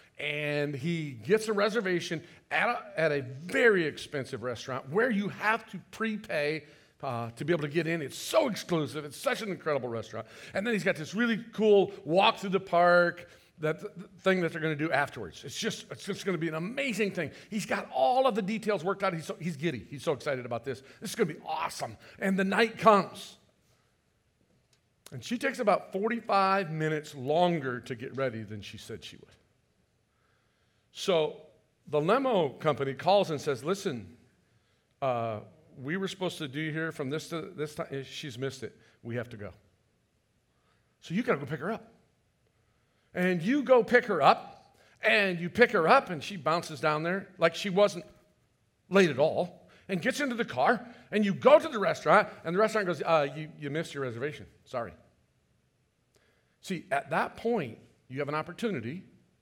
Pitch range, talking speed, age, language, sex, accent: 145-205 Hz, 195 wpm, 50-69, English, male, American